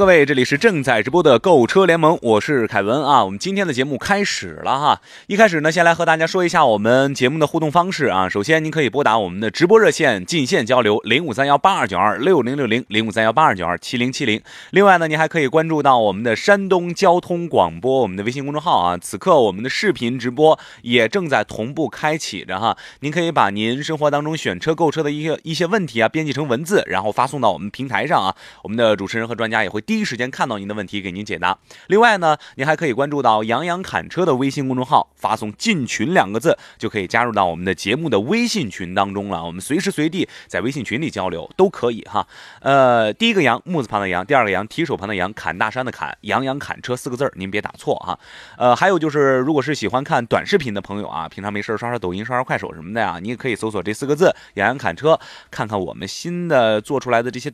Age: 20-39